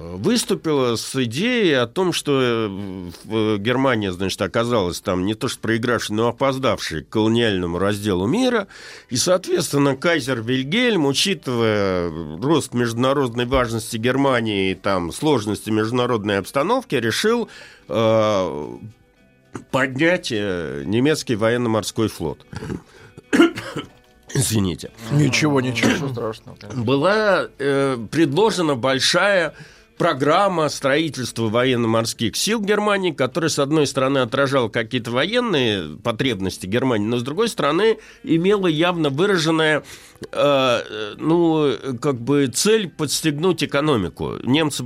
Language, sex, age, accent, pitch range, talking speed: Russian, male, 50-69, native, 115-155 Hz, 105 wpm